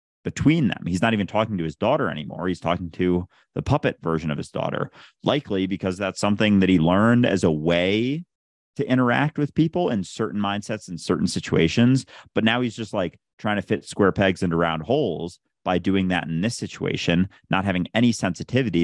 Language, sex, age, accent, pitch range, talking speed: English, male, 30-49, American, 85-115 Hz, 200 wpm